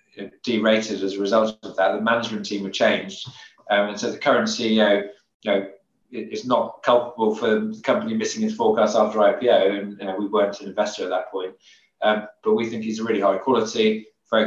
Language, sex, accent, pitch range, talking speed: English, male, British, 105-120 Hz, 205 wpm